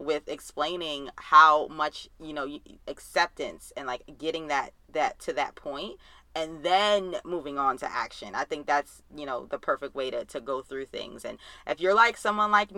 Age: 20-39